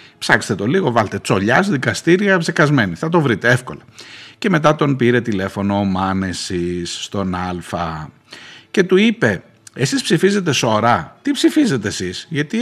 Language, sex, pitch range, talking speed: Greek, male, 105-155 Hz, 145 wpm